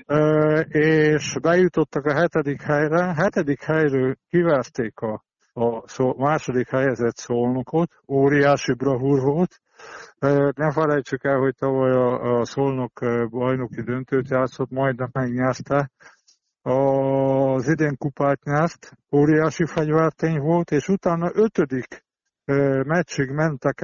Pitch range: 135-160 Hz